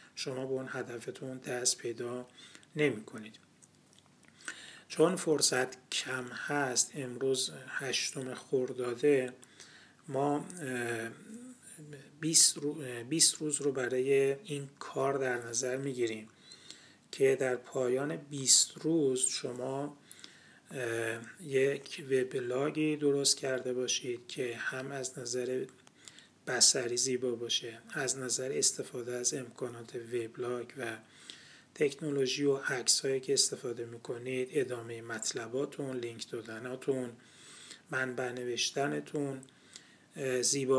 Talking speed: 90 wpm